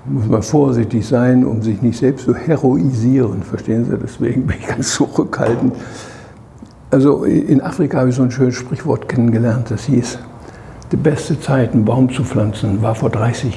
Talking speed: 175 wpm